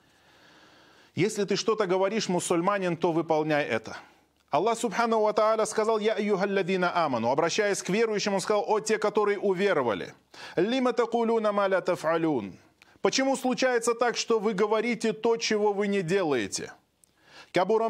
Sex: male